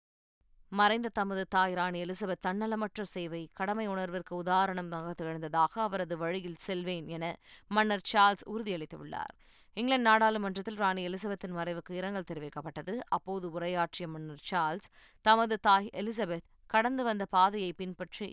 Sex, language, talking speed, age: female, Tamil, 120 wpm, 20-39